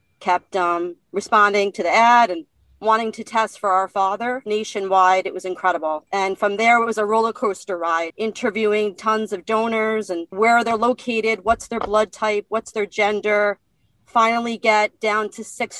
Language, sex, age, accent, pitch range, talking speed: English, female, 40-59, American, 190-225 Hz, 175 wpm